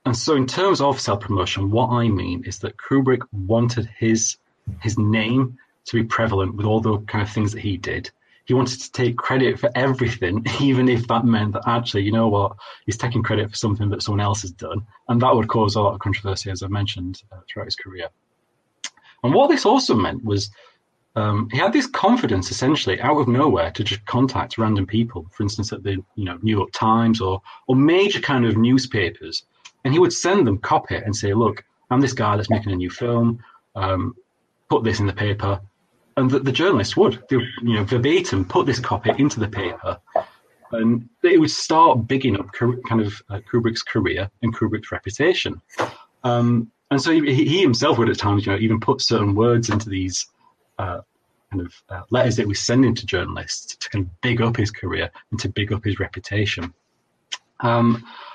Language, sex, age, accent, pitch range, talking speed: English, male, 30-49, British, 100-125 Hz, 205 wpm